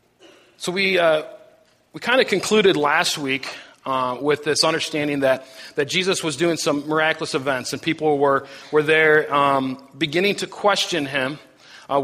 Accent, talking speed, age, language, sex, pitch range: American, 160 wpm, 40-59, English, male, 145-170 Hz